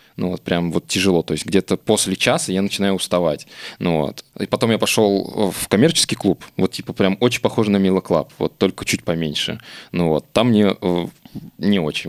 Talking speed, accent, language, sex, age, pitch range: 205 wpm, native, Russian, male, 20-39, 85-105 Hz